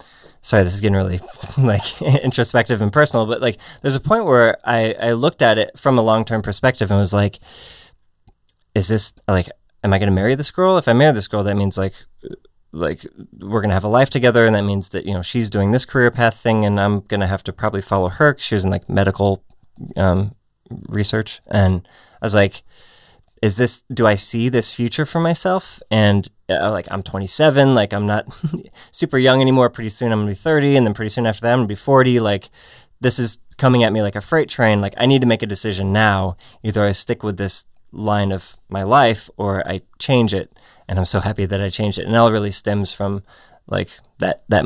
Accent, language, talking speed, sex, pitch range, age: American, English, 225 wpm, male, 100-120 Hz, 20-39